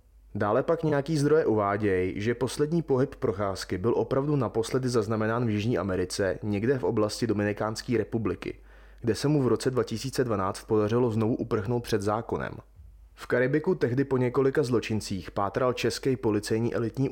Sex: male